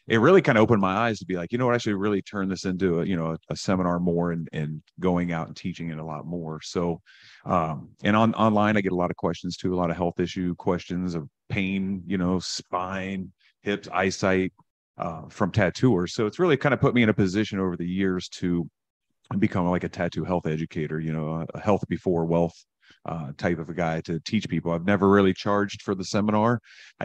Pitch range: 85-100 Hz